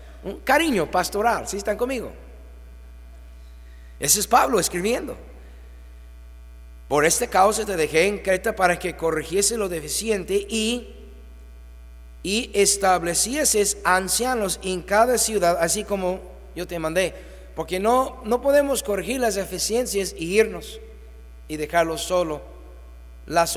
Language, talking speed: Spanish, 120 wpm